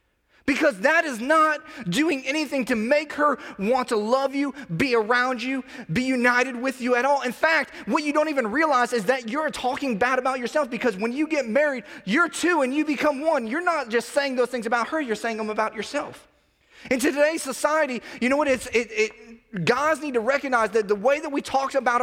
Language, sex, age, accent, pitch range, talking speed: English, male, 30-49, American, 225-285 Hz, 220 wpm